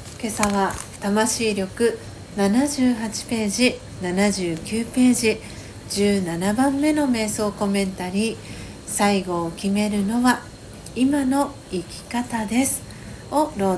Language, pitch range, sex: Japanese, 195-225 Hz, female